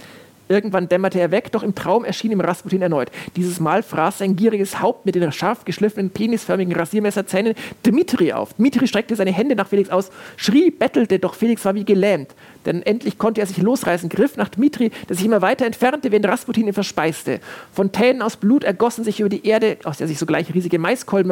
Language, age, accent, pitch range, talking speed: German, 40-59, German, 175-230 Hz, 200 wpm